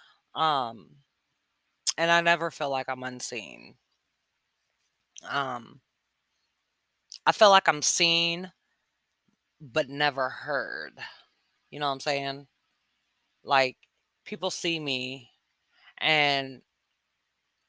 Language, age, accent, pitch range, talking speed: English, 20-39, American, 130-145 Hz, 90 wpm